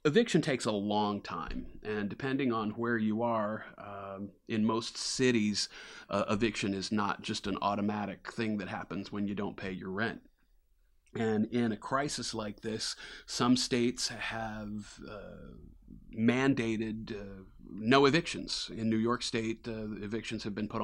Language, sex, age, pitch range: English, male, 40-59, 100-115 Hz